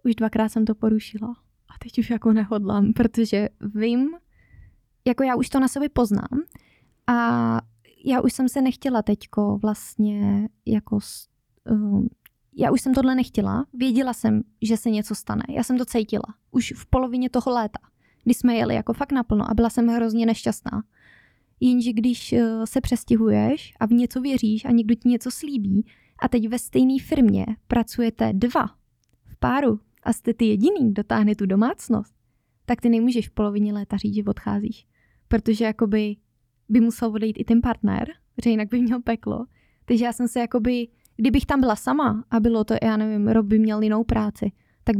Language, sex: Czech, female